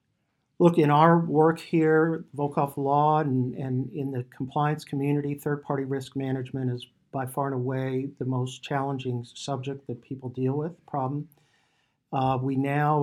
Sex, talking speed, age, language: male, 150 wpm, 50-69, English